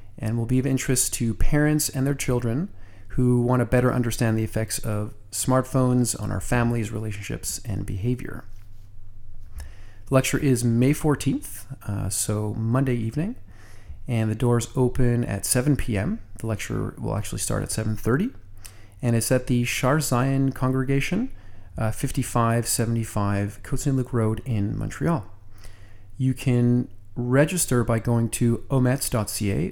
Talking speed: 135 wpm